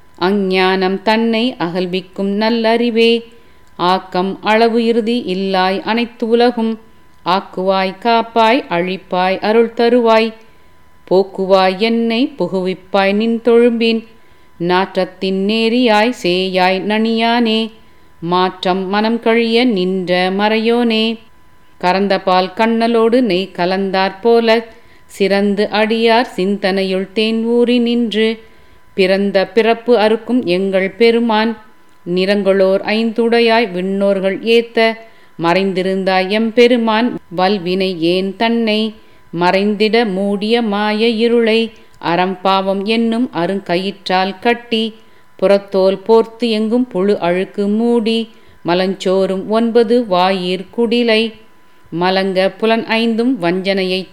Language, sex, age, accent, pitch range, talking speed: Tamil, female, 40-59, native, 190-230 Hz, 85 wpm